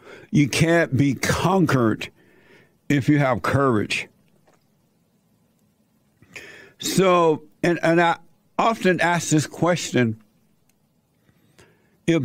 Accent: American